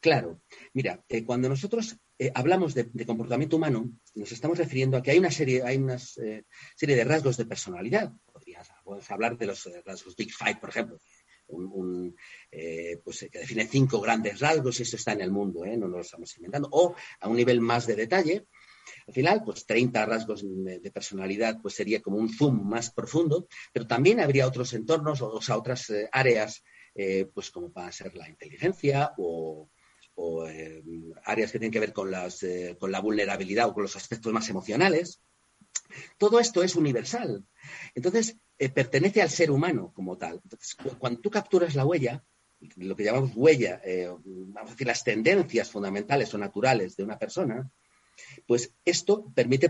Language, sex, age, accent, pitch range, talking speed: Spanish, male, 40-59, Spanish, 105-145 Hz, 180 wpm